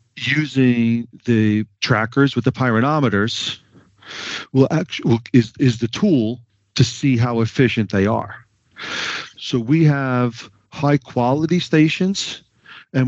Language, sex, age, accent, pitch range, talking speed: English, male, 50-69, American, 105-125 Hz, 115 wpm